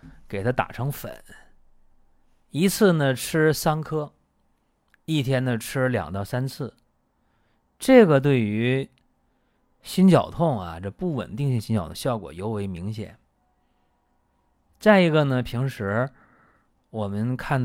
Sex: male